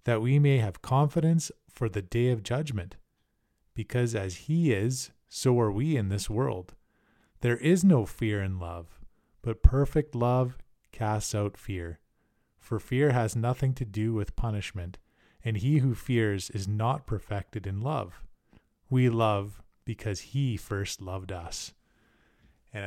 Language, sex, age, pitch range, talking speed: English, male, 20-39, 100-130 Hz, 150 wpm